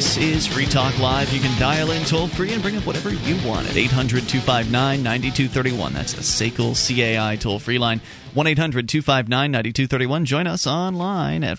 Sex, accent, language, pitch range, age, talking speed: male, American, English, 120-165 Hz, 30-49, 150 wpm